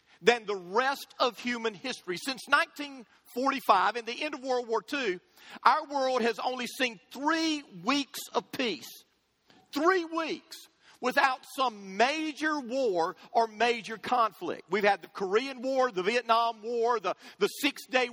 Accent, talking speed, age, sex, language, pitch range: American, 145 wpm, 50-69, male, English, 225-290 Hz